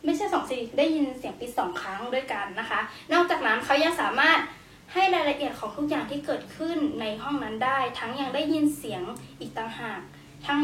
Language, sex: Thai, female